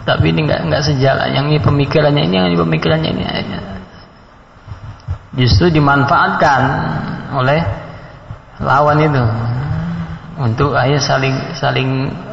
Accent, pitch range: native, 105-130 Hz